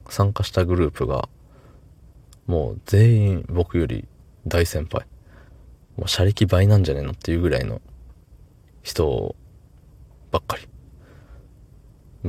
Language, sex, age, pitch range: Japanese, male, 20-39, 80-100 Hz